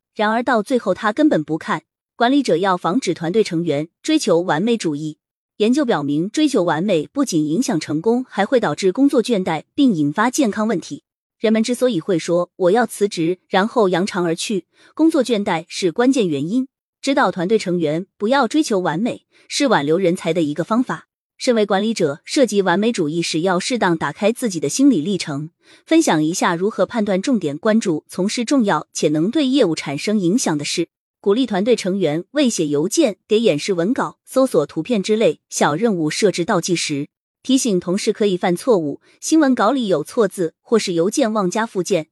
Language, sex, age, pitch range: Chinese, female, 20-39, 170-245 Hz